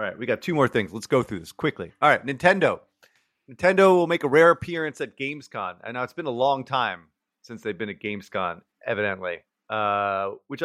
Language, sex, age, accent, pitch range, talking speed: English, male, 30-49, American, 110-140 Hz, 215 wpm